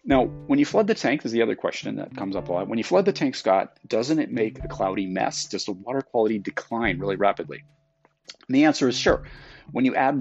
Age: 30-49